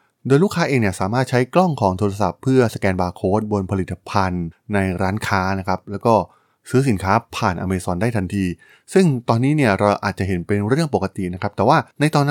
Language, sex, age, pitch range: Thai, male, 20-39, 95-125 Hz